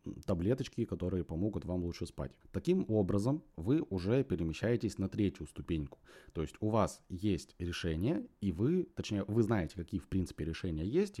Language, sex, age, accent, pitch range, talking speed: Russian, male, 30-49, native, 85-115 Hz, 160 wpm